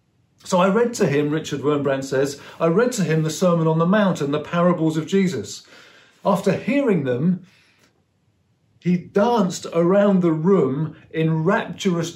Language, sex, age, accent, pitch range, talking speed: English, male, 40-59, British, 150-200 Hz, 160 wpm